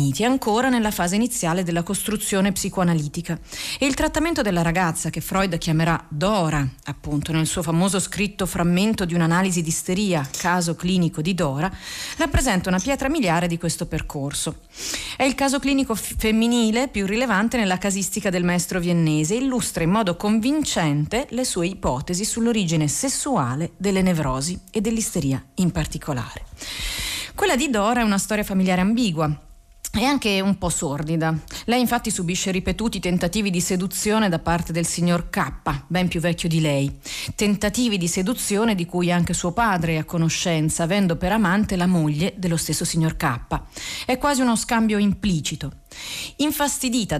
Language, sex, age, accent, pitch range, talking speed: Italian, female, 40-59, native, 165-215 Hz, 155 wpm